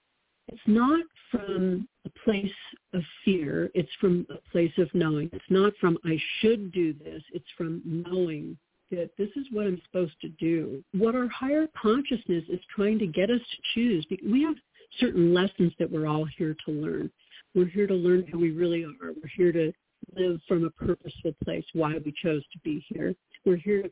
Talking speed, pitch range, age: 195 wpm, 165-205 Hz, 50-69